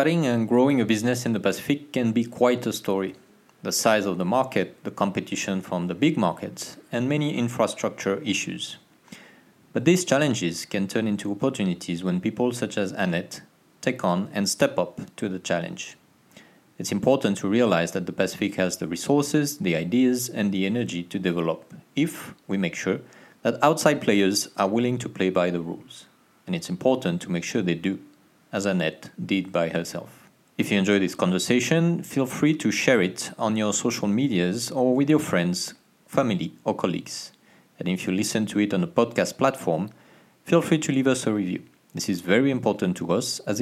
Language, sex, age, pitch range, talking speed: English, male, 40-59, 95-130 Hz, 190 wpm